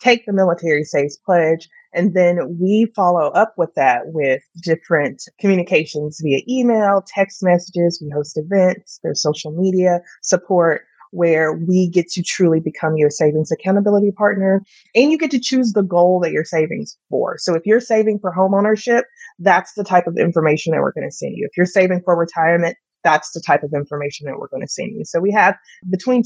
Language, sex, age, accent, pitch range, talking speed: English, female, 30-49, American, 160-200 Hz, 190 wpm